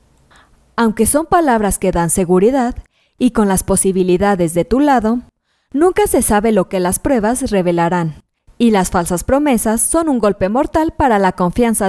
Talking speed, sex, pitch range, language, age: 160 wpm, female, 180-255 Hz, Spanish, 20-39